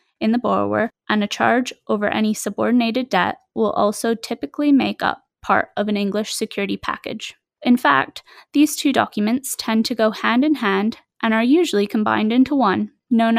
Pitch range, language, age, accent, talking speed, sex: 210-260 Hz, English, 10-29, American, 170 wpm, female